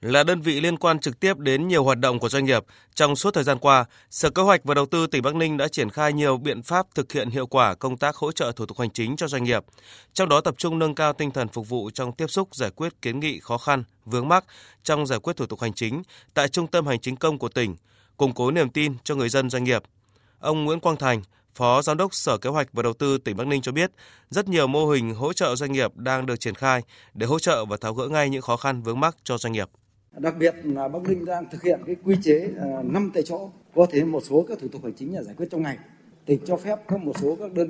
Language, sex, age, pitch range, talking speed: Vietnamese, male, 20-39, 125-165 Hz, 280 wpm